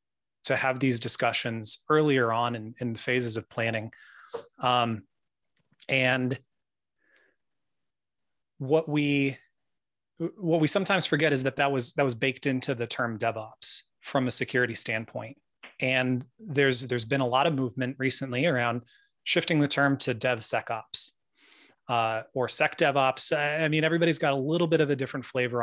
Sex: male